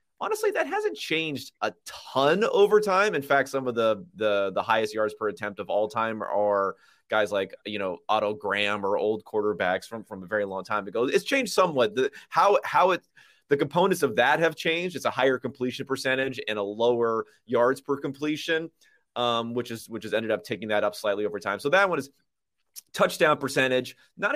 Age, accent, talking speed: 30-49, American, 205 wpm